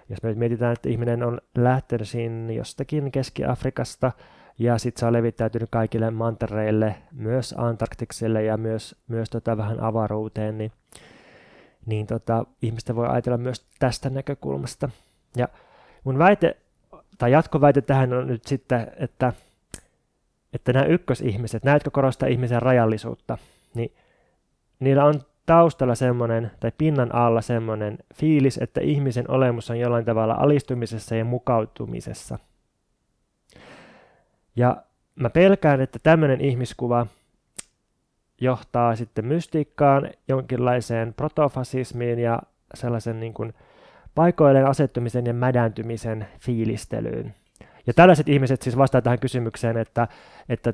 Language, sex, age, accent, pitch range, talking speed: Finnish, male, 20-39, native, 115-135 Hz, 115 wpm